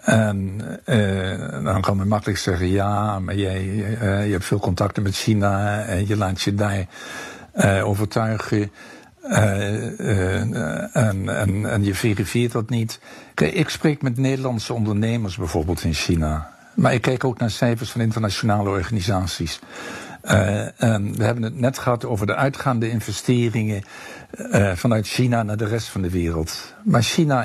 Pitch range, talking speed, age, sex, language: 100-125 Hz, 155 wpm, 60-79, male, Dutch